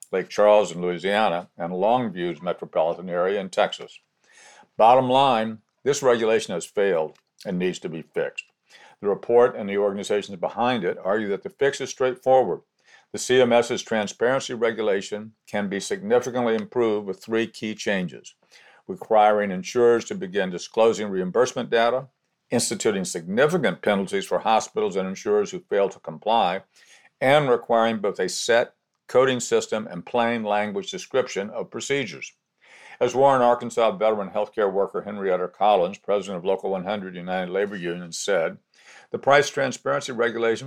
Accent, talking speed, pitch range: American, 145 wpm, 105-130 Hz